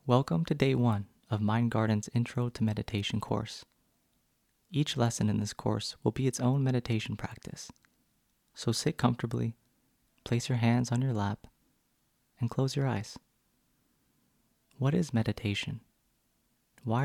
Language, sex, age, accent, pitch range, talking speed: English, male, 30-49, American, 110-125 Hz, 135 wpm